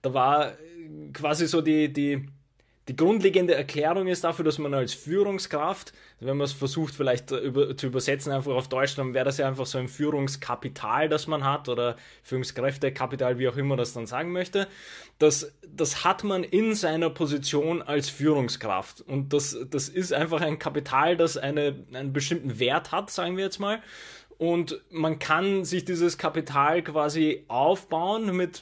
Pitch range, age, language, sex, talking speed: 140-170 Hz, 20-39, German, male, 165 wpm